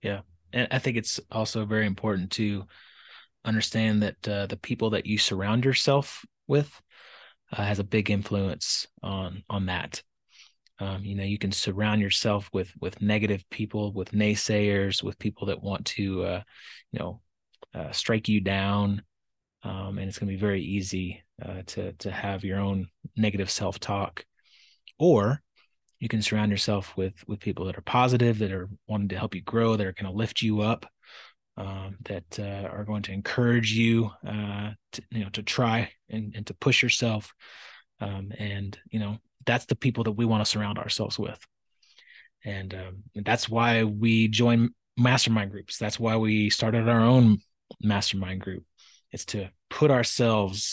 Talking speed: 175 wpm